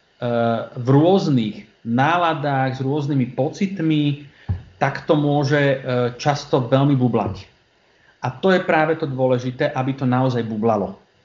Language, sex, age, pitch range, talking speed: Slovak, male, 40-59, 130-165 Hz, 115 wpm